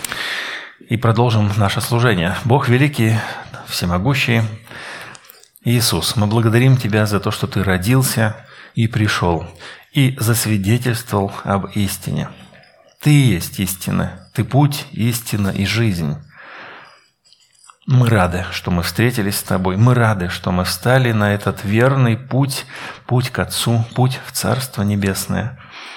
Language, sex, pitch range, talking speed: Russian, male, 100-125 Hz, 120 wpm